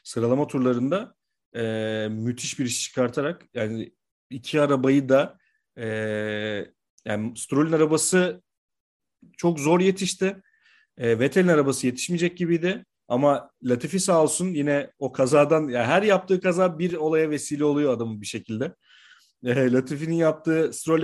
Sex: male